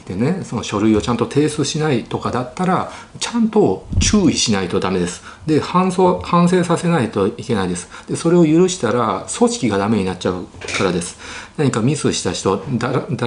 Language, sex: Japanese, male